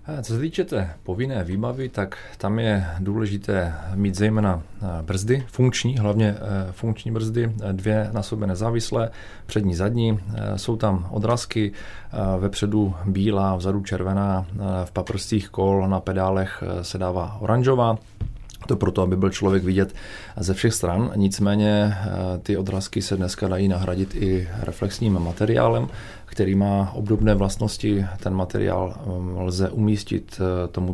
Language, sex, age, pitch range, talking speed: Czech, male, 30-49, 95-105 Hz, 125 wpm